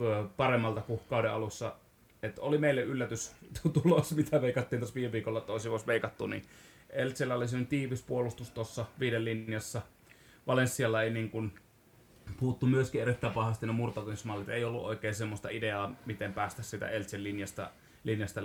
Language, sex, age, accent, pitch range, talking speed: Finnish, male, 30-49, native, 105-125 Hz, 140 wpm